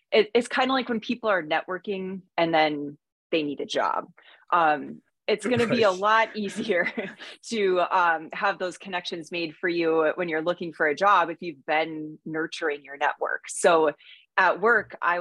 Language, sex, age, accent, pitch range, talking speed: English, female, 30-49, American, 155-190 Hz, 180 wpm